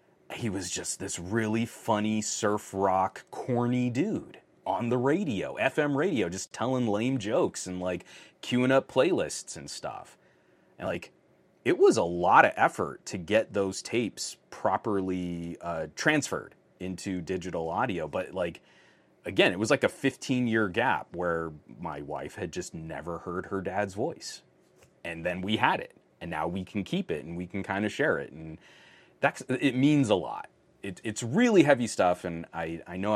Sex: male